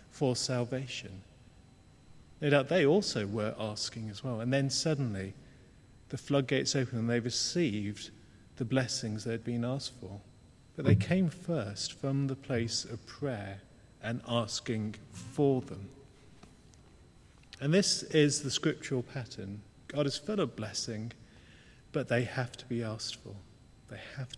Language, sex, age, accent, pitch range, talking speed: English, male, 40-59, British, 115-145 Hz, 145 wpm